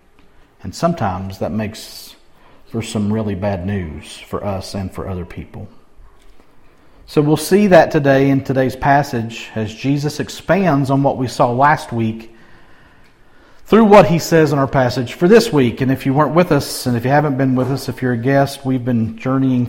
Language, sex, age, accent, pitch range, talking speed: English, male, 50-69, American, 115-145 Hz, 190 wpm